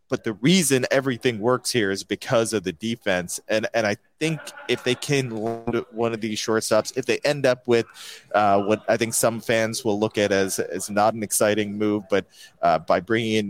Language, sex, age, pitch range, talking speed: English, male, 30-49, 110-130 Hz, 205 wpm